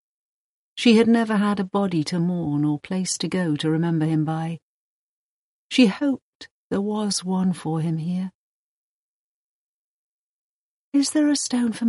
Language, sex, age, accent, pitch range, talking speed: English, female, 50-69, British, 165-220 Hz, 145 wpm